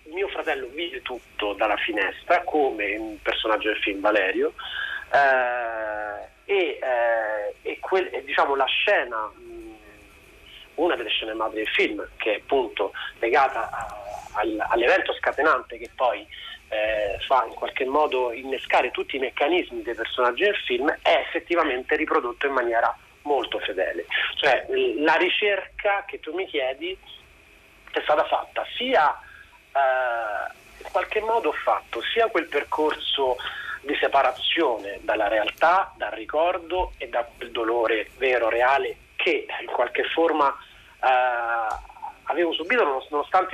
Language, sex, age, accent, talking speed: Italian, male, 30-49, native, 125 wpm